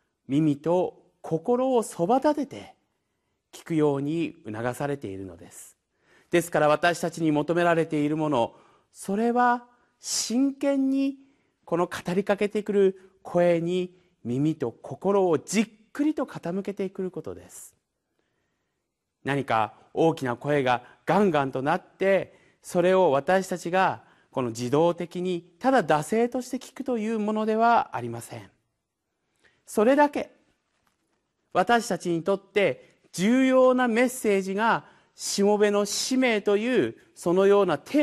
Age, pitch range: 40-59, 155-220 Hz